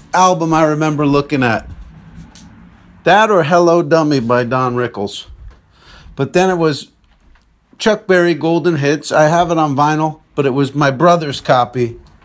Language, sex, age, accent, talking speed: English, male, 50-69, American, 150 wpm